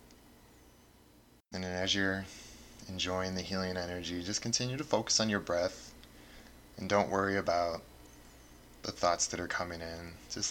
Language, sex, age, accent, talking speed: English, male, 20-39, American, 150 wpm